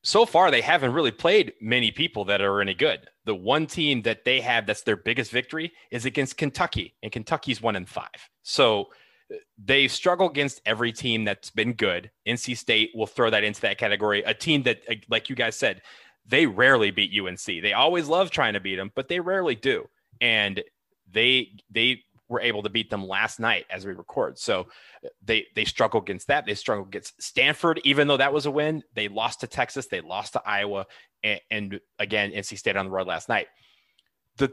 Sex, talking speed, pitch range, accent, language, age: male, 205 wpm, 105-150 Hz, American, English, 30-49